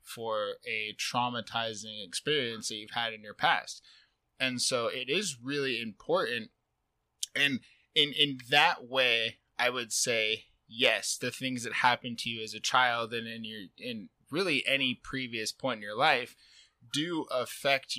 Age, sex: 20-39, male